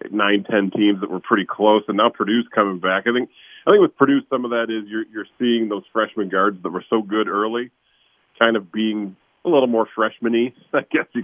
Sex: male